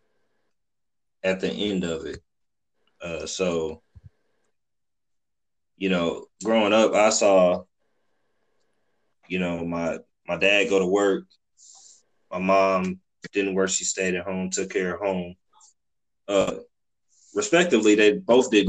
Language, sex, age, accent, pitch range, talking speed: English, male, 20-39, American, 90-100 Hz, 120 wpm